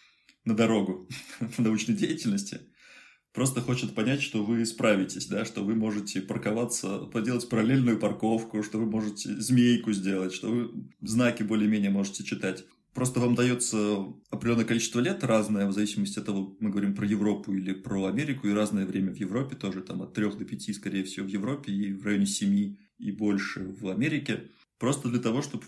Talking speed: 175 wpm